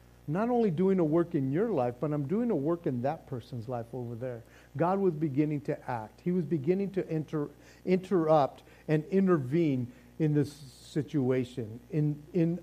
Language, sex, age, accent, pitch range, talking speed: English, male, 50-69, American, 120-175 Hz, 175 wpm